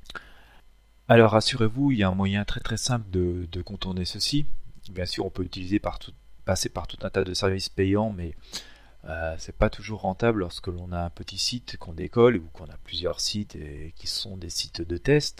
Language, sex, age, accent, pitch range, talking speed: French, male, 40-59, French, 85-110 Hz, 215 wpm